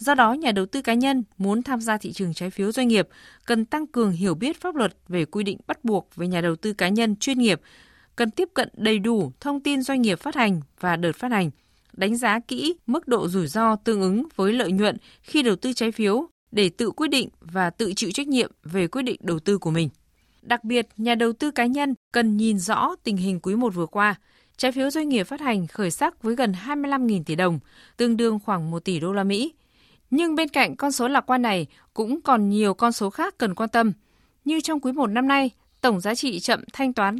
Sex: female